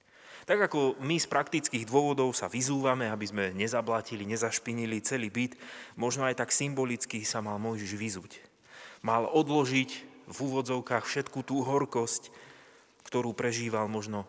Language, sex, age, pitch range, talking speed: Slovak, male, 30-49, 105-130 Hz, 135 wpm